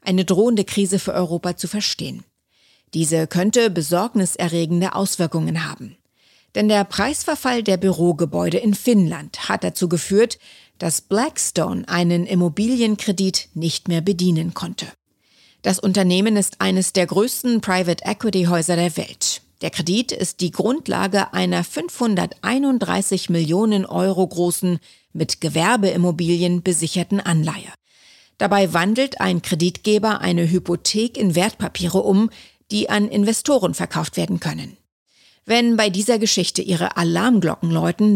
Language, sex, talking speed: German, female, 120 wpm